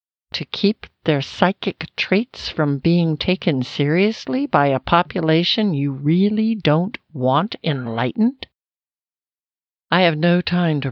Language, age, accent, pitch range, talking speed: English, 60-79, American, 135-180 Hz, 120 wpm